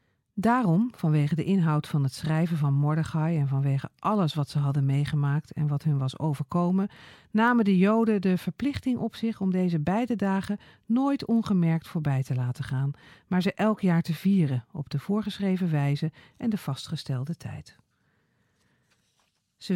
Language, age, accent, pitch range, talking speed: Dutch, 50-69, Dutch, 145-205 Hz, 160 wpm